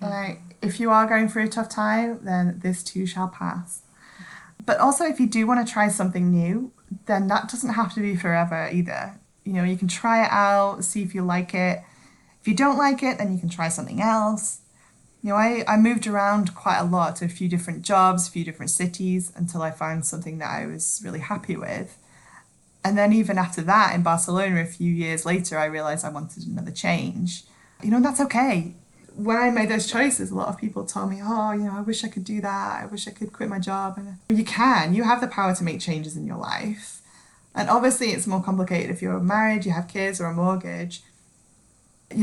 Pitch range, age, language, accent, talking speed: 175-210 Hz, 20-39, English, British, 225 wpm